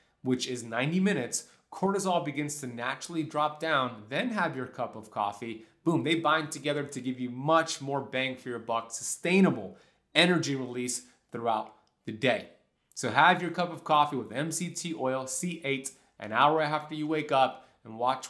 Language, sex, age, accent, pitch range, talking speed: English, male, 30-49, American, 125-160 Hz, 175 wpm